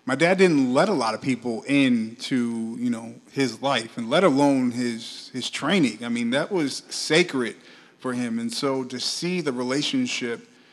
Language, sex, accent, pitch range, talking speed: English, male, American, 125-165 Hz, 180 wpm